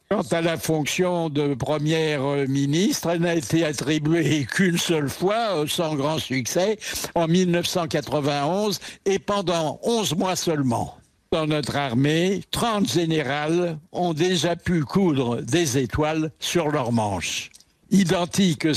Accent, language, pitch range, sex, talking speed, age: French, French, 150-190 Hz, male, 125 wpm, 60-79